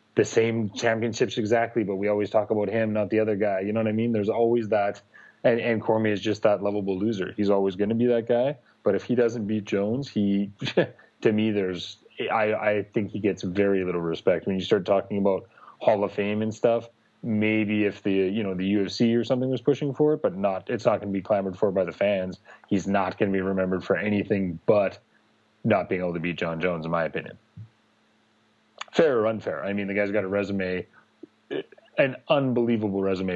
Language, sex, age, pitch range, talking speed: English, male, 30-49, 95-110 Hz, 220 wpm